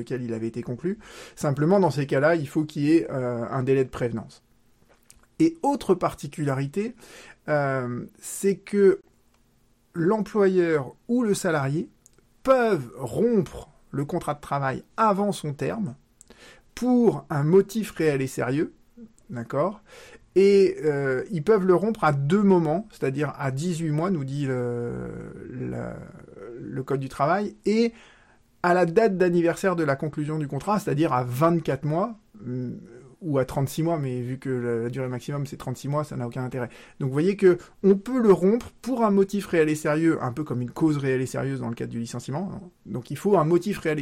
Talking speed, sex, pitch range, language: 185 wpm, male, 130-190 Hz, French